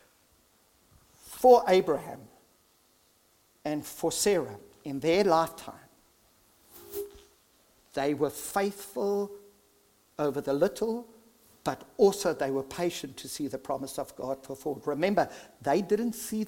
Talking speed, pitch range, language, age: 110 wpm, 135-205 Hz, English, 50-69